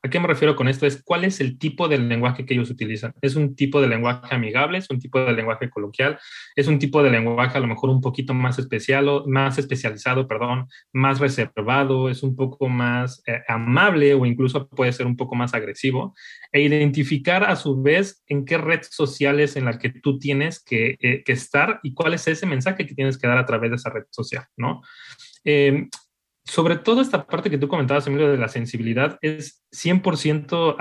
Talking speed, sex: 210 wpm, male